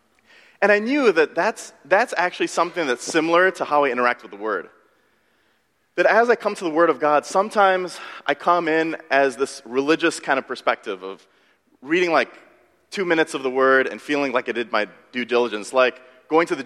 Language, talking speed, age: English, 200 wpm, 30-49